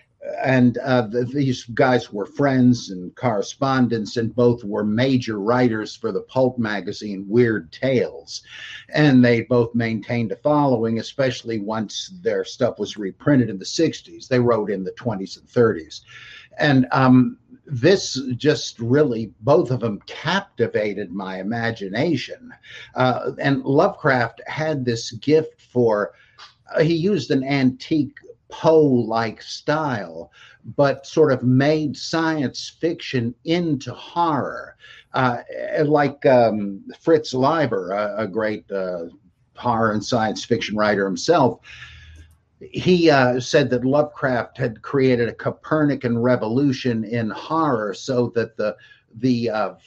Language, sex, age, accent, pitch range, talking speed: English, male, 60-79, American, 115-140 Hz, 130 wpm